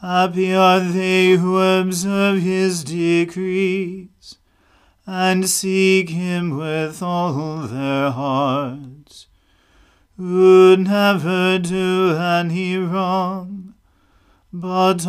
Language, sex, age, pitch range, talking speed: English, male, 40-59, 160-185 Hz, 80 wpm